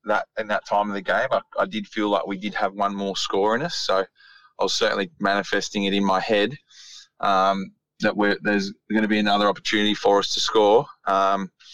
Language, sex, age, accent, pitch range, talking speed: English, male, 20-39, Australian, 95-110 Hz, 220 wpm